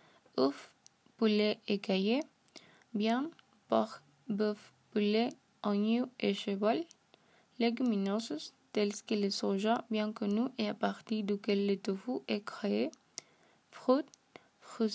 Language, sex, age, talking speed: French, female, 20-39, 115 wpm